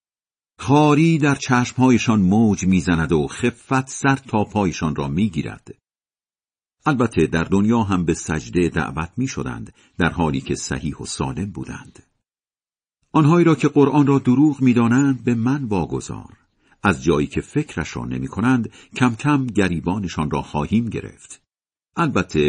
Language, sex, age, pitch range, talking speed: Persian, male, 50-69, 90-130 Hz, 135 wpm